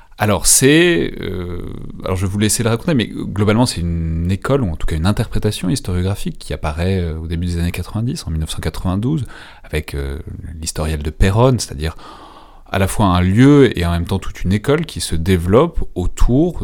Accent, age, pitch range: French, 30-49, 80-105 Hz